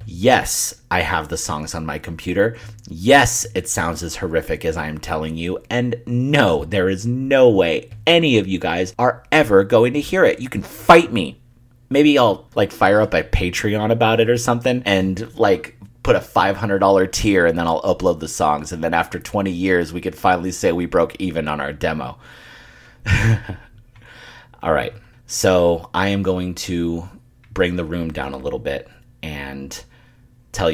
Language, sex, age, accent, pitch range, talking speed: English, male, 30-49, American, 85-120 Hz, 180 wpm